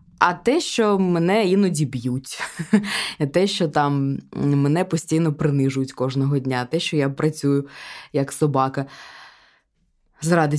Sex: female